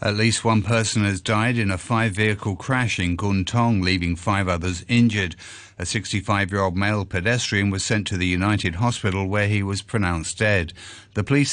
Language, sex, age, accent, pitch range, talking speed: English, male, 50-69, British, 95-115 Hz, 170 wpm